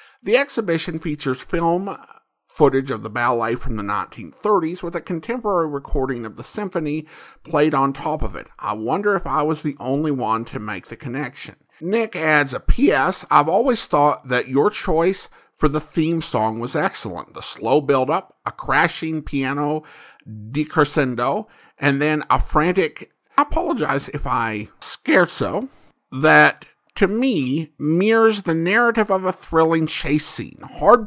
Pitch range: 130-185 Hz